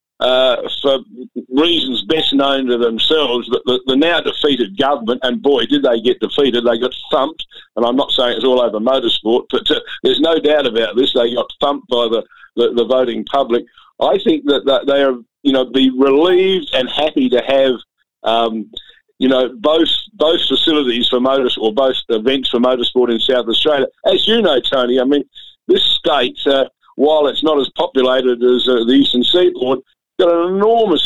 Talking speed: 185 wpm